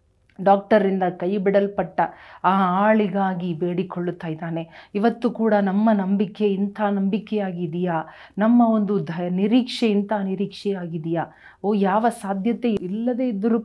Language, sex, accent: Kannada, female, native